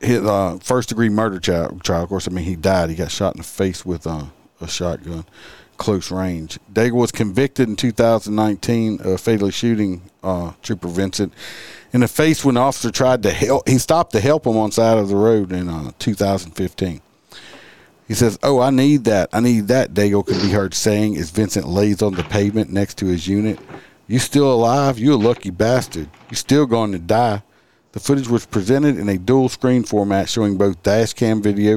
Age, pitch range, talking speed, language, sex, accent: 50-69, 95-115 Hz, 200 wpm, English, male, American